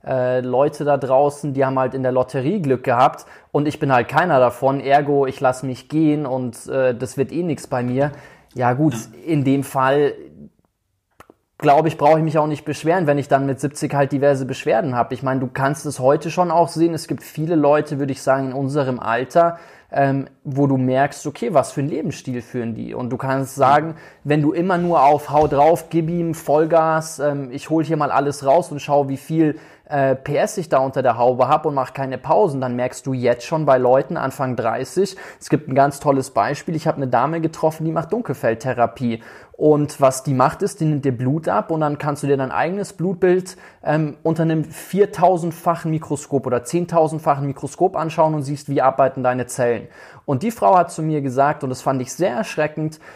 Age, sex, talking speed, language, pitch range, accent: 20-39, male, 210 wpm, German, 130-160 Hz, German